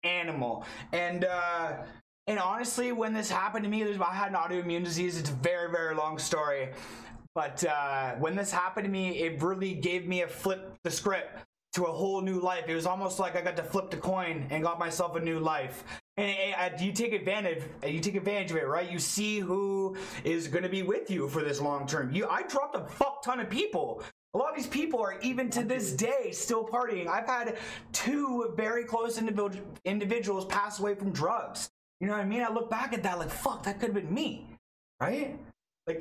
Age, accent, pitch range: 20-39, American, 170-220 Hz